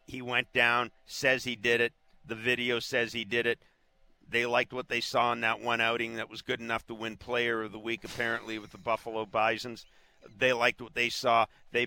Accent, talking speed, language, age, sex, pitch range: American, 215 wpm, English, 50-69, male, 115-145 Hz